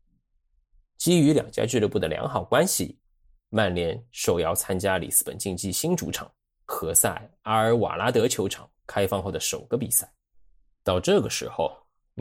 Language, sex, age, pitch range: Chinese, male, 20-39, 95-130 Hz